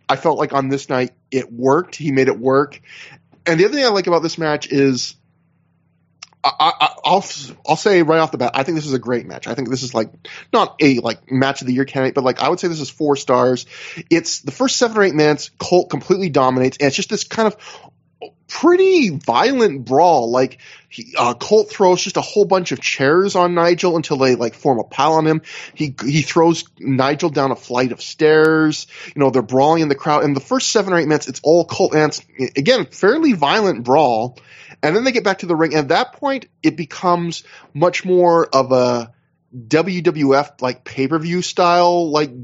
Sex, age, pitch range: male, 20-39, 135-175 Hz